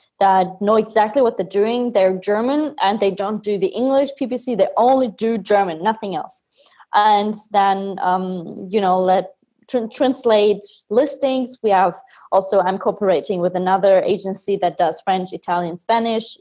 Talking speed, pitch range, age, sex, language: 155 wpm, 190-225 Hz, 20-39, female, English